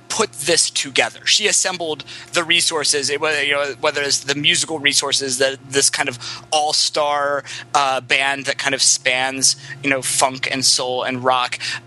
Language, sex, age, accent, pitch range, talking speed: English, male, 20-39, American, 130-160 Hz, 175 wpm